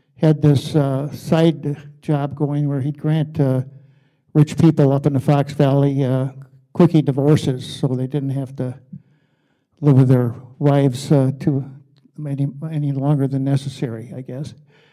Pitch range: 140-160 Hz